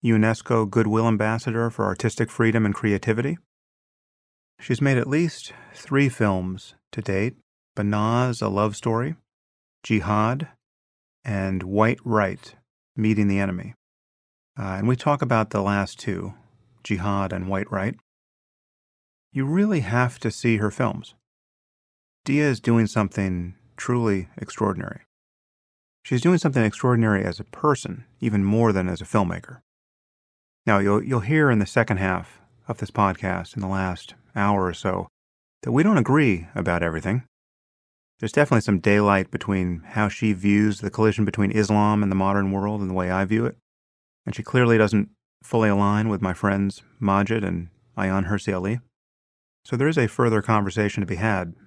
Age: 40-59